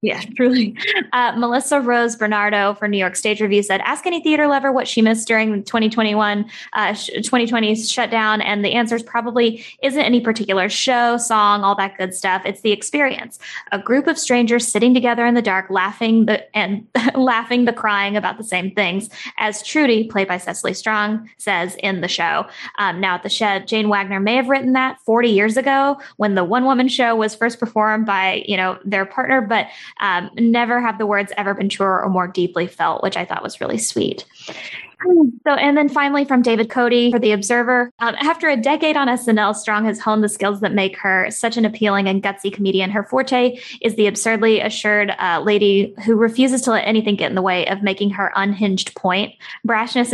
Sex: female